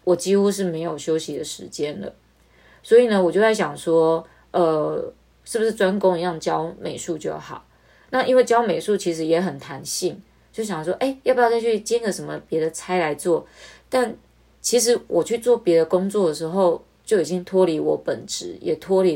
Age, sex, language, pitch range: 20-39, female, Chinese, 160-210 Hz